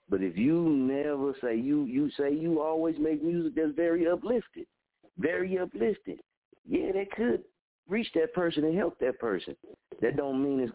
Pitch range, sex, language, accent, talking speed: 110-155 Hz, male, English, American, 175 wpm